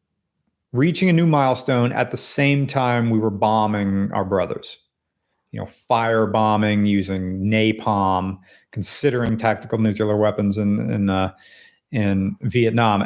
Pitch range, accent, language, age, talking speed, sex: 95-115 Hz, American, English, 40-59, 125 wpm, male